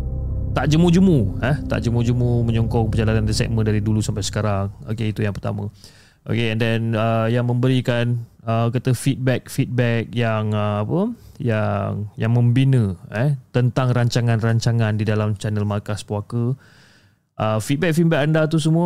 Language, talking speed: Malay, 155 wpm